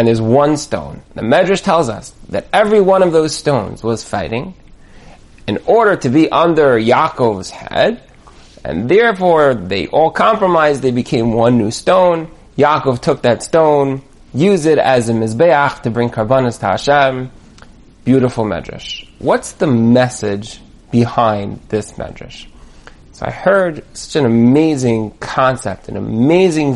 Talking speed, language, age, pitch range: 145 wpm, English, 30-49, 115-160 Hz